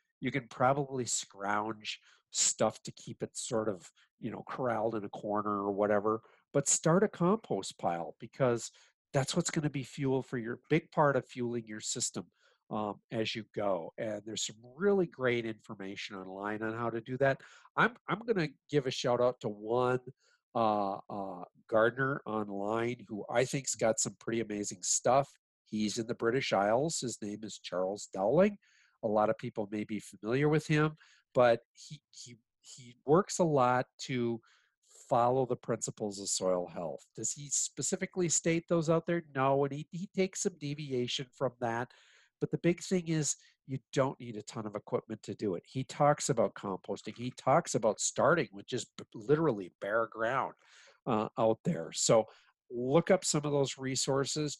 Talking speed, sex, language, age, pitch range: 180 wpm, male, English, 50-69, 110-145 Hz